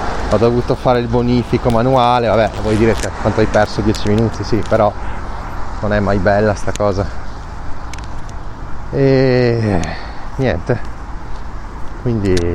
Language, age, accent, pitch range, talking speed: Italian, 30-49, native, 90-115 Hz, 125 wpm